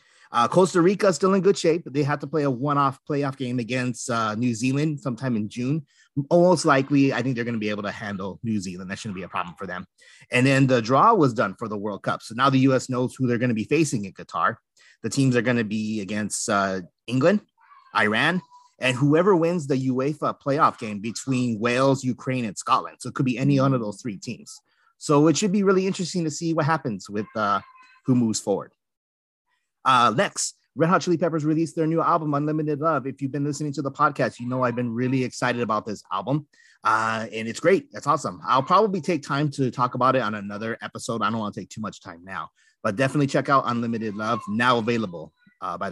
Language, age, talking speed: English, 30-49, 230 wpm